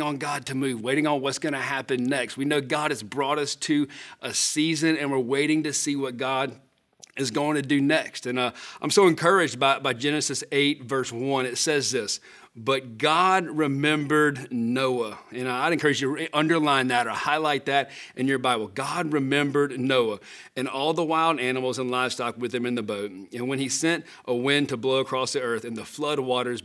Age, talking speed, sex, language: 40-59, 210 wpm, male, English